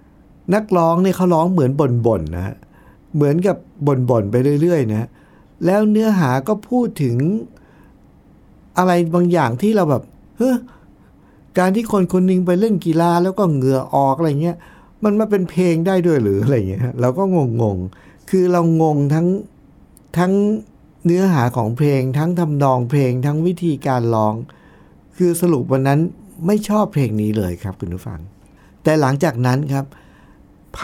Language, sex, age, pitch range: Thai, male, 60-79, 105-165 Hz